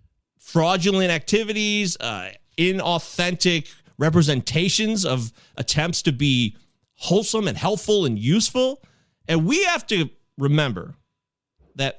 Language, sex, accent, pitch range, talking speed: English, male, American, 160-225 Hz, 100 wpm